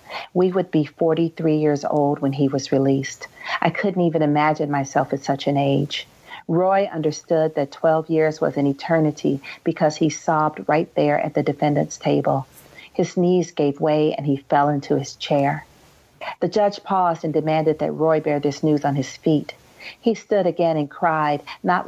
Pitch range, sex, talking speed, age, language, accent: 145-165 Hz, female, 180 wpm, 40-59, English, American